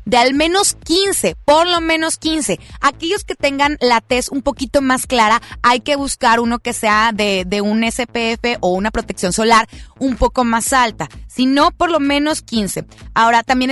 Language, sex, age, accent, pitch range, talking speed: Spanish, female, 30-49, Mexican, 220-280 Hz, 185 wpm